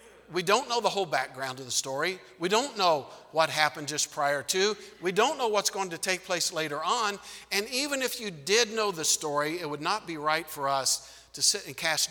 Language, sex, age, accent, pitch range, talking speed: English, male, 50-69, American, 145-185 Hz, 230 wpm